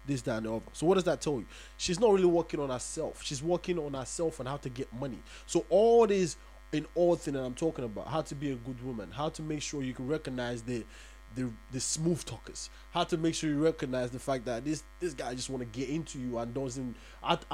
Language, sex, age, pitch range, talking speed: English, male, 20-39, 130-175 Hz, 255 wpm